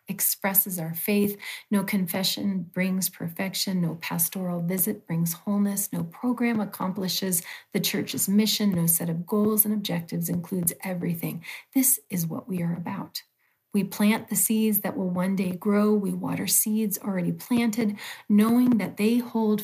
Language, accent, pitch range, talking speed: English, American, 180-215 Hz, 155 wpm